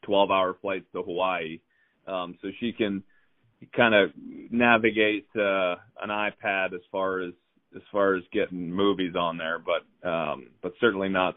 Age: 30-49